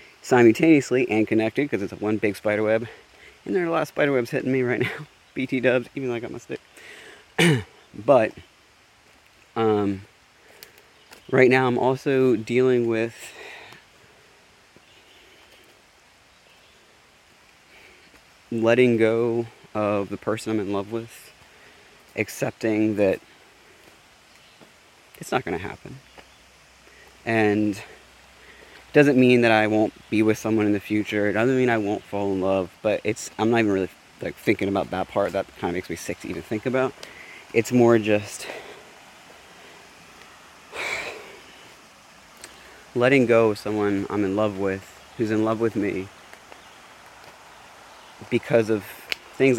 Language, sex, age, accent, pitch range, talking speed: English, male, 30-49, American, 105-125 Hz, 135 wpm